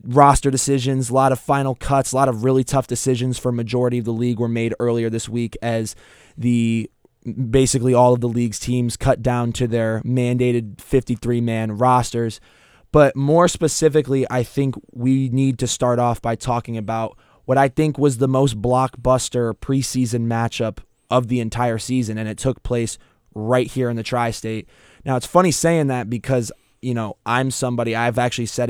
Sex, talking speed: male, 180 wpm